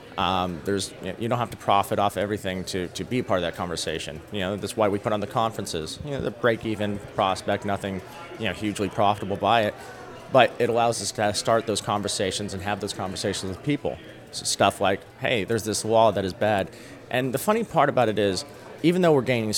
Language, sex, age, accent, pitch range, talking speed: English, male, 30-49, American, 100-120 Hz, 240 wpm